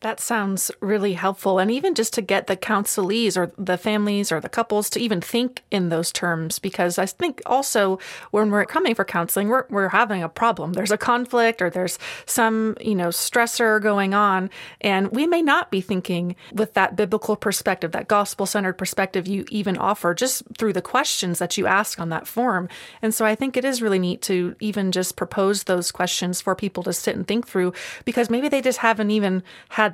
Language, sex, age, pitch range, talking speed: English, female, 30-49, 185-230 Hz, 205 wpm